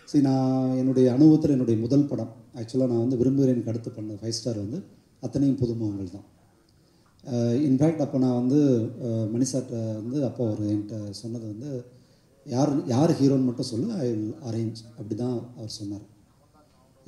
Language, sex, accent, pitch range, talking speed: Tamil, male, native, 115-140 Hz, 150 wpm